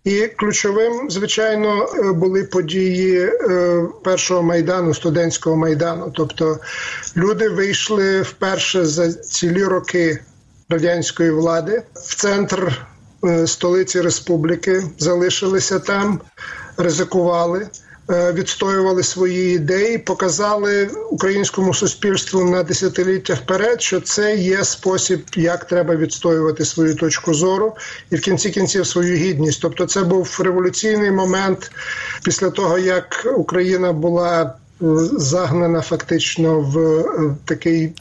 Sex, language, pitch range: male, Ukrainian, 165-190 Hz